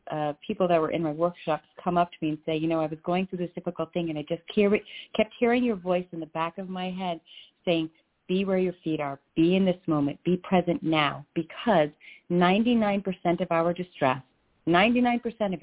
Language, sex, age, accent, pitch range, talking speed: English, female, 40-59, American, 160-205 Hz, 210 wpm